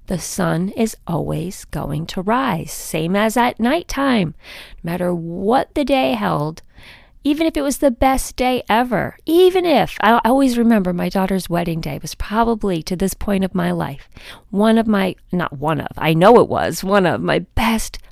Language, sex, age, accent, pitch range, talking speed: English, female, 40-59, American, 175-240 Hz, 185 wpm